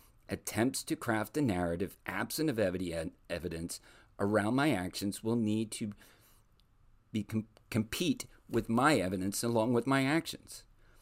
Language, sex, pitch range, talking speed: English, male, 90-110 Hz, 120 wpm